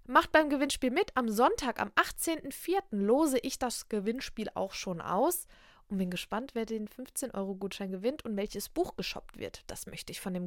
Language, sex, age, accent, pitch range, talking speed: German, female, 20-39, German, 210-290 Hz, 185 wpm